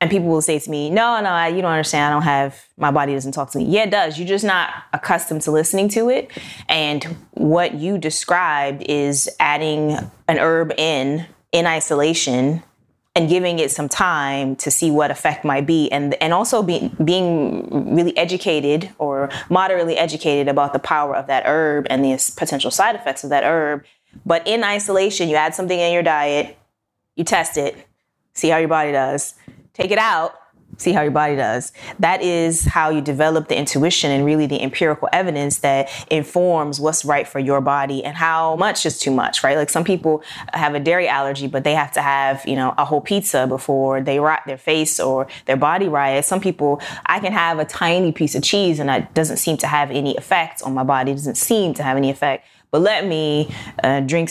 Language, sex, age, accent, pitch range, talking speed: English, female, 20-39, American, 140-170 Hz, 210 wpm